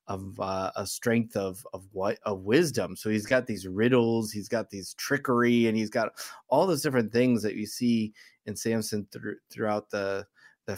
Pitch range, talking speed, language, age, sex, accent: 105-125 Hz, 190 wpm, English, 20-39, male, American